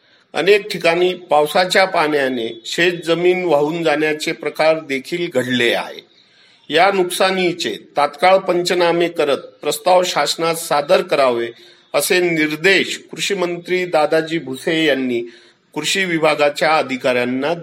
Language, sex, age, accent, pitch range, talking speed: Marathi, male, 50-69, native, 150-185 Hz, 100 wpm